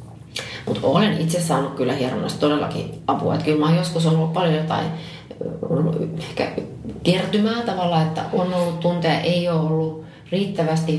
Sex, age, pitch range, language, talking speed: female, 30-49, 150-175 Hz, Finnish, 145 wpm